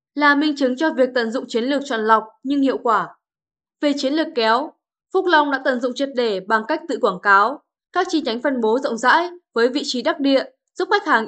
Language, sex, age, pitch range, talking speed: Vietnamese, female, 10-29, 235-300 Hz, 240 wpm